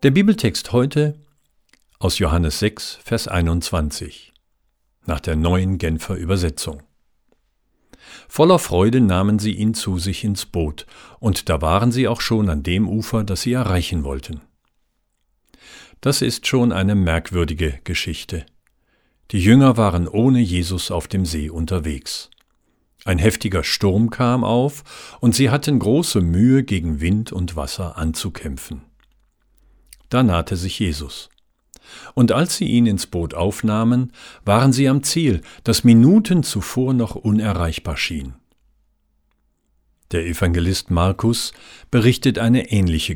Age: 50-69